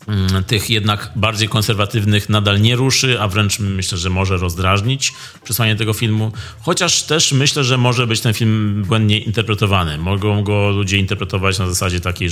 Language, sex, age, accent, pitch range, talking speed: Polish, male, 30-49, native, 95-115 Hz, 160 wpm